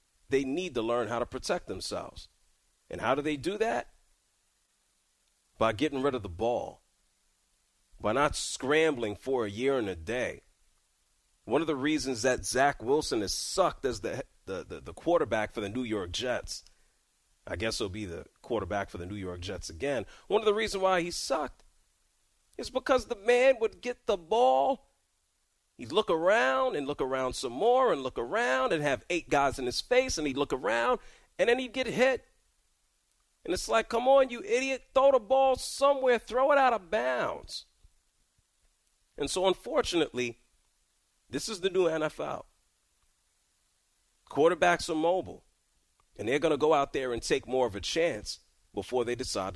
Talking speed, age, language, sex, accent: 175 wpm, 40-59, English, male, American